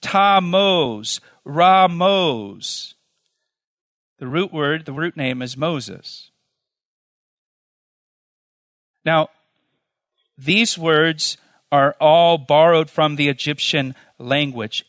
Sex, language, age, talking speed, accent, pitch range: male, English, 40-59, 85 wpm, American, 145-180 Hz